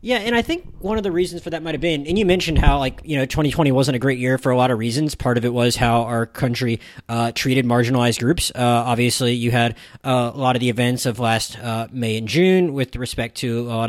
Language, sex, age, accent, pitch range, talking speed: English, male, 20-39, American, 125-160 Hz, 270 wpm